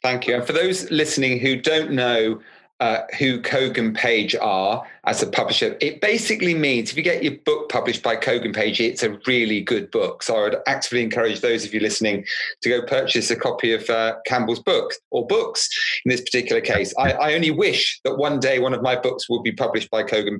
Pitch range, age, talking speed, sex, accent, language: 125-185 Hz, 40-59, 220 wpm, male, British, English